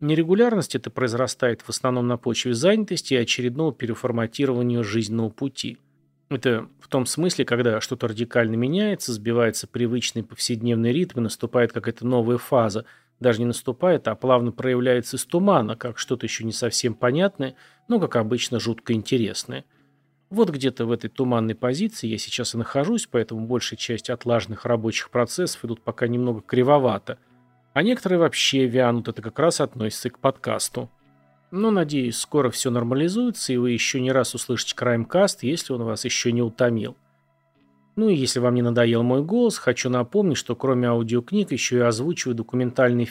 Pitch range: 115-135 Hz